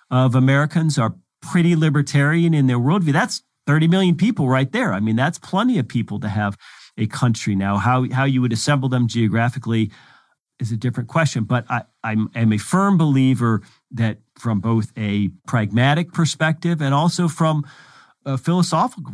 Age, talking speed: 40-59, 170 wpm